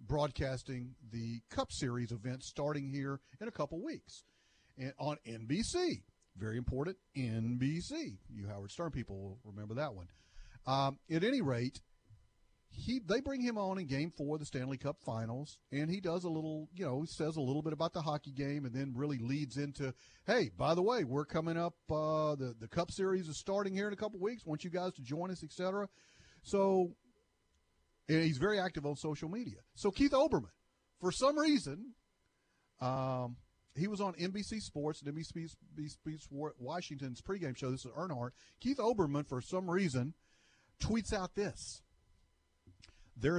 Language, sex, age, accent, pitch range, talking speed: English, male, 40-59, American, 125-180 Hz, 175 wpm